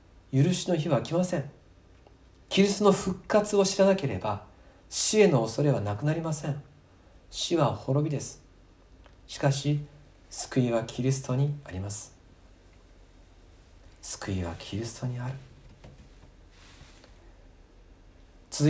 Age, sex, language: 50-69, male, Japanese